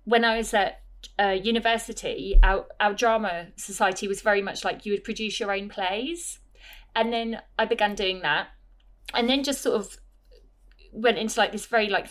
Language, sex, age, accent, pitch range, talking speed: English, female, 30-49, British, 190-225 Hz, 185 wpm